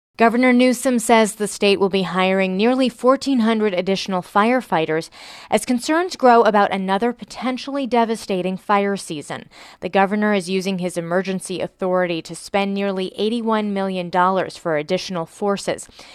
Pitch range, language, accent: 180-235 Hz, English, American